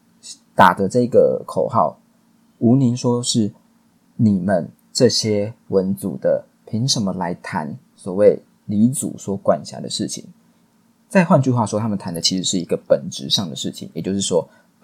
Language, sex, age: Chinese, male, 20-39